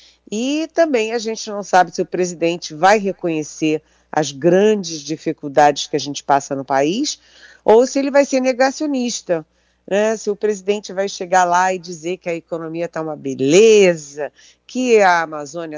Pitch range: 165-215 Hz